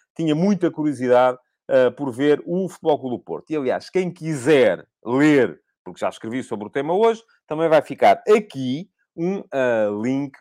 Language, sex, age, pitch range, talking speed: Portuguese, male, 40-59, 125-170 Hz, 155 wpm